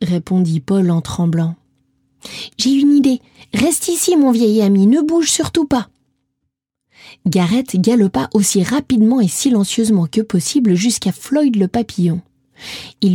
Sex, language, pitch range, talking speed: female, French, 190-260 Hz, 130 wpm